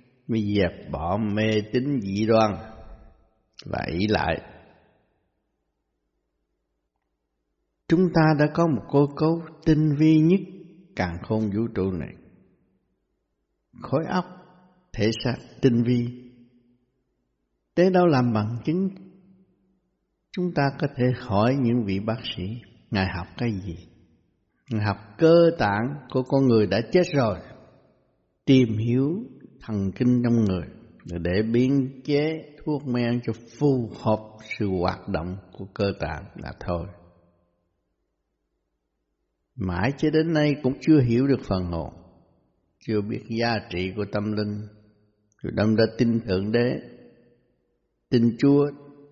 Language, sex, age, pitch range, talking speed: Vietnamese, male, 60-79, 95-135 Hz, 130 wpm